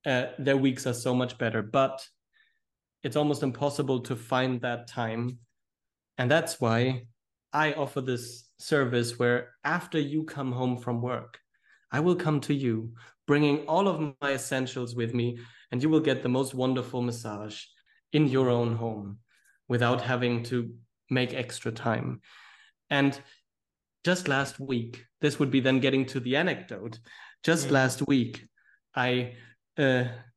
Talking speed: 150 wpm